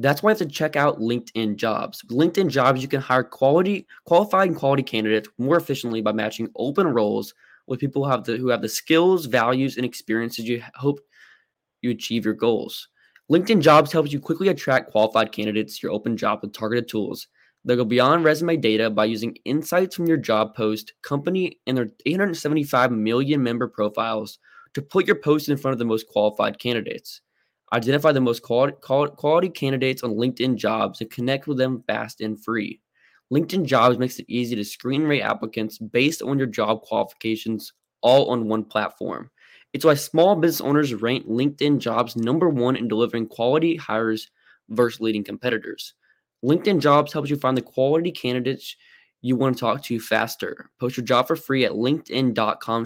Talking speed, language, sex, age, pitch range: 185 wpm, English, male, 20-39, 115-145 Hz